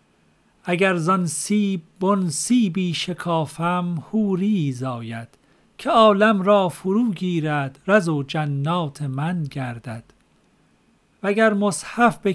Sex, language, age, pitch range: male, Persian, 40-59, 155-205 Hz